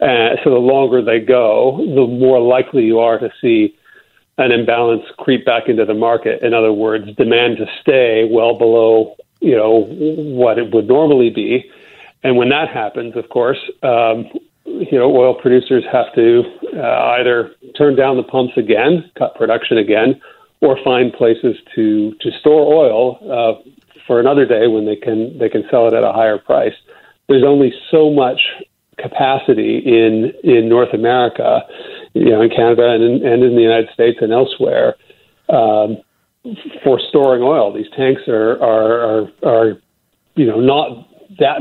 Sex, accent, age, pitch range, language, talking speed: male, American, 50-69, 115-140 Hz, English, 165 wpm